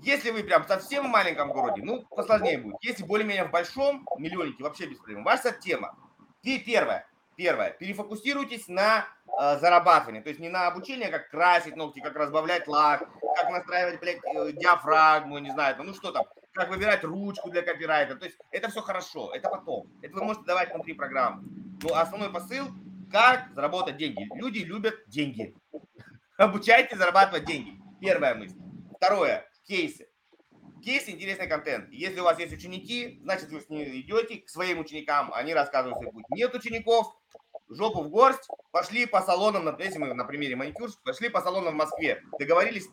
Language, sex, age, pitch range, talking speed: Russian, male, 30-49, 160-220 Hz, 160 wpm